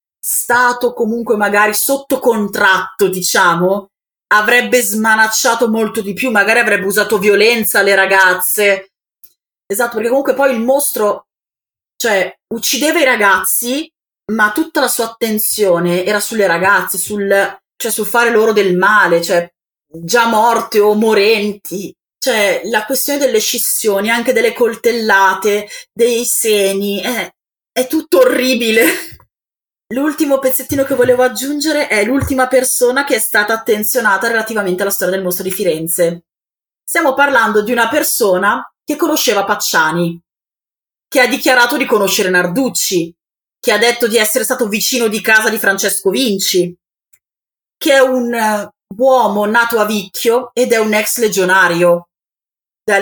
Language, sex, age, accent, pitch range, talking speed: Italian, female, 30-49, native, 195-250 Hz, 135 wpm